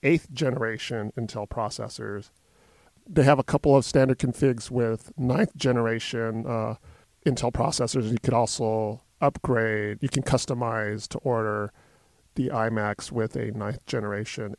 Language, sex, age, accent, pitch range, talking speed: English, male, 40-59, American, 110-140 Hz, 130 wpm